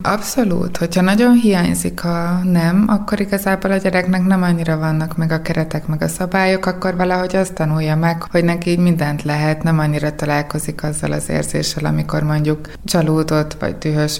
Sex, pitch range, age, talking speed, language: female, 150-170 Hz, 20-39, 165 wpm, Hungarian